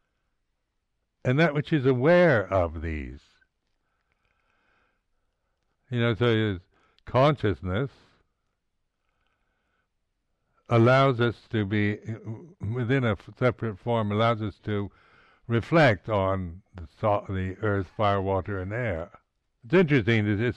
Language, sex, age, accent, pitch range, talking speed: English, male, 60-79, American, 95-115 Hz, 110 wpm